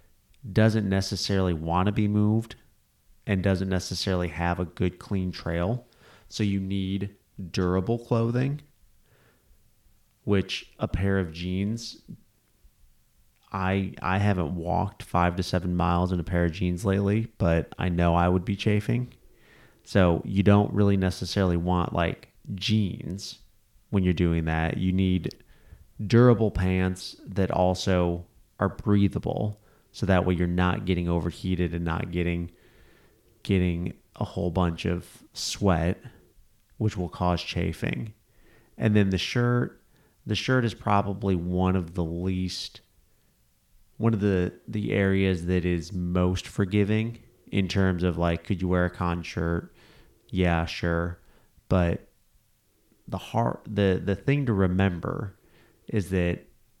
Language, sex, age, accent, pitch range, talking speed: English, male, 30-49, American, 90-105 Hz, 135 wpm